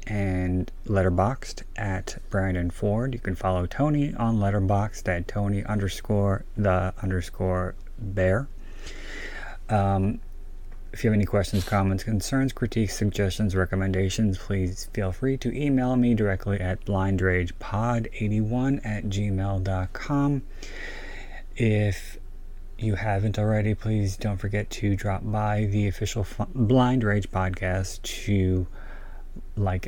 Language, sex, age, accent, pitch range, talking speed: English, male, 30-49, American, 95-110 Hz, 115 wpm